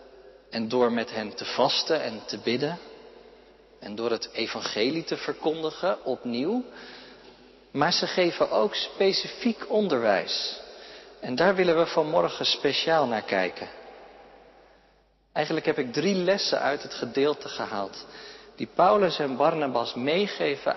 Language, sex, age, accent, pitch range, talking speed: Dutch, male, 50-69, Dutch, 125-180 Hz, 125 wpm